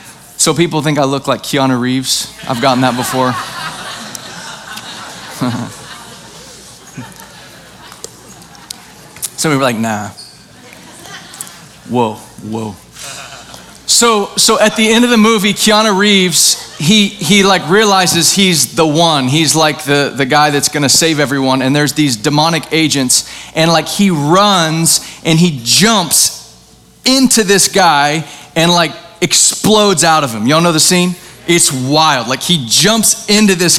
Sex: male